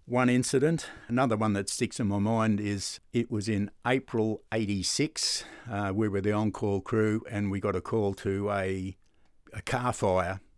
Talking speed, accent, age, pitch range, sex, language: 175 wpm, Australian, 60-79, 95-110 Hz, male, English